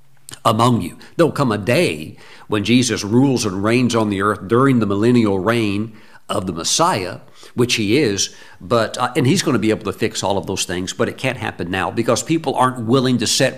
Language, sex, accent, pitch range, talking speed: English, male, American, 110-135 Hz, 215 wpm